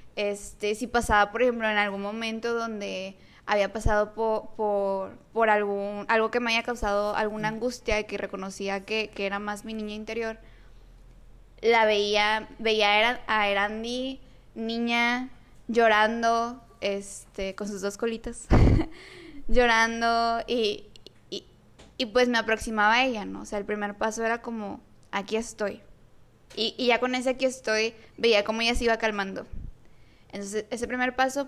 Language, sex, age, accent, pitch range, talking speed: Spanish, female, 20-39, Mexican, 210-245 Hz, 155 wpm